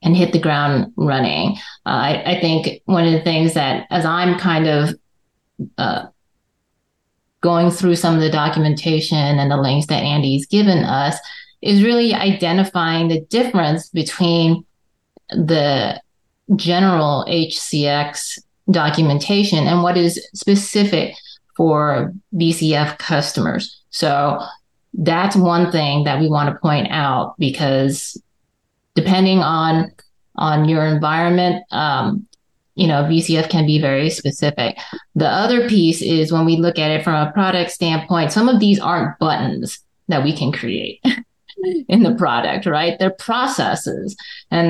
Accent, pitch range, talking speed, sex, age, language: American, 155-190 Hz, 135 wpm, female, 30-49, English